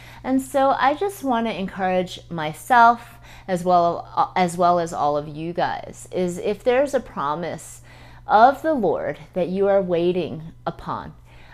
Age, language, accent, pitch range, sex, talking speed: 30-49, English, American, 170-225 Hz, female, 150 wpm